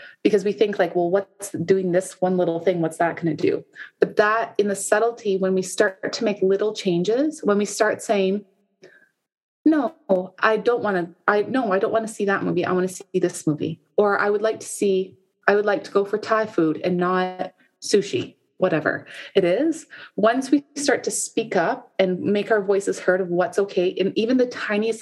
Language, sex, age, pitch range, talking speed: English, female, 20-39, 180-215 Hz, 215 wpm